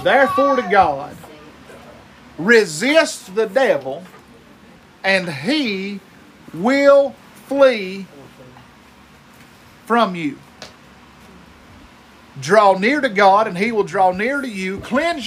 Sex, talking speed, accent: male, 95 wpm, American